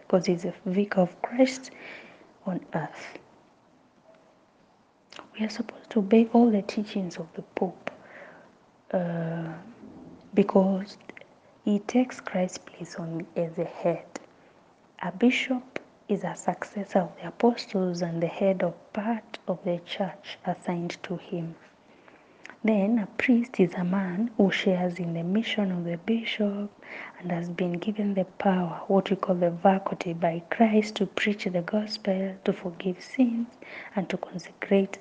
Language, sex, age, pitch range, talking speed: English, female, 20-39, 180-220 Hz, 145 wpm